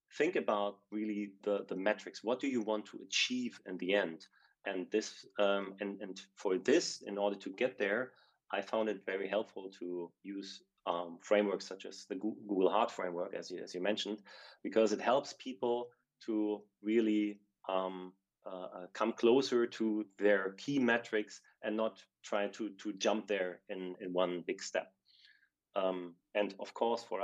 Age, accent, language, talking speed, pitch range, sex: 30-49, German, English, 170 wpm, 100-115 Hz, male